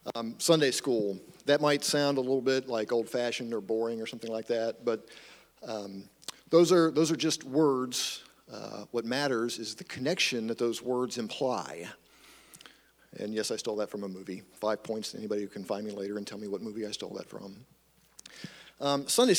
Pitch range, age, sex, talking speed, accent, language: 115-145 Hz, 50-69, male, 195 wpm, American, English